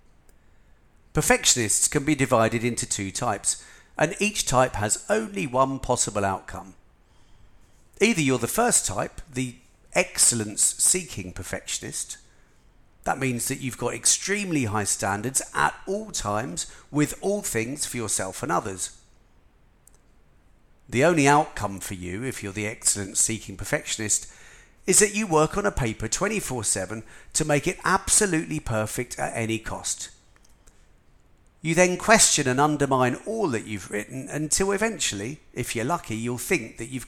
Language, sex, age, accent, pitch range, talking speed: English, male, 40-59, British, 105-150 Hz, 140 wpm